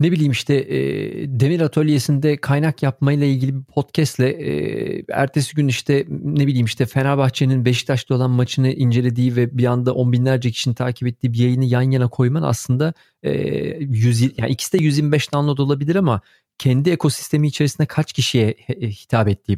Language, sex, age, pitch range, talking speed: Turkish, male, 40-59, 120-140 Hz, 155 wpm